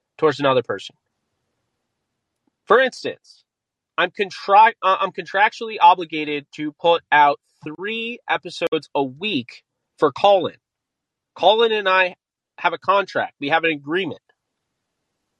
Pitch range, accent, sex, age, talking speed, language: 165-215 Hz, American, male, 30-49, 115 wpm, English